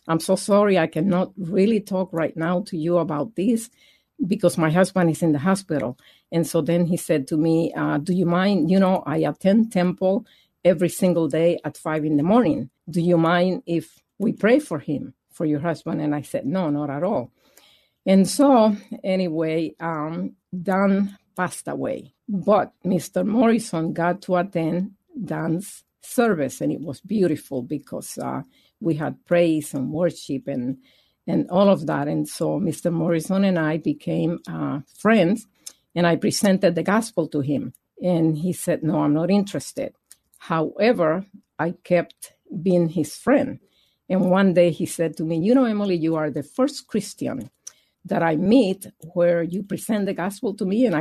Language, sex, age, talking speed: English, female, 50-69, 175 wpm